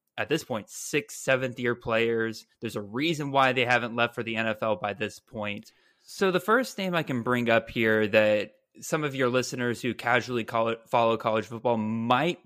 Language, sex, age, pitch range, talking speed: English, male, 20-39, 115-145 Hz, 190 wpm